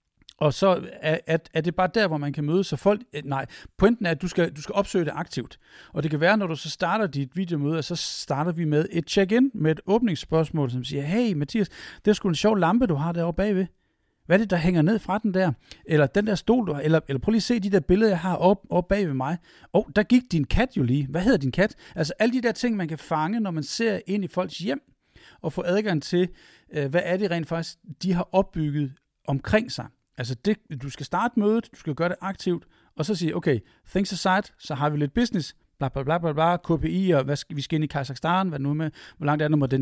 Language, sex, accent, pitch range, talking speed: Danish, male, native, 150-195 Hz, 260 wpm